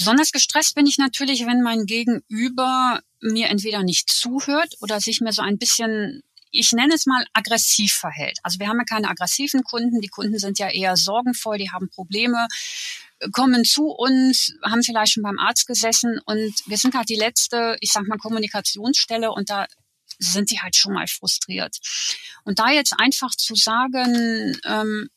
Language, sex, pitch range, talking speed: German, female, 210-255 Hz, 175 wpm